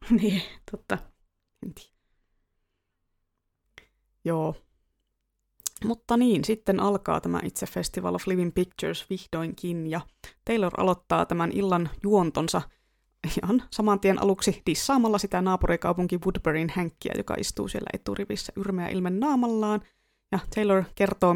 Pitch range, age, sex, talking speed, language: 170-210 Hz, 20-39, female, 110 wpm, Finnish